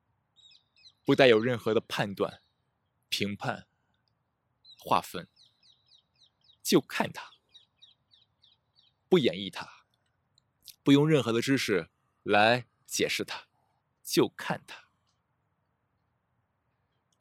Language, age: Chinese, 20-39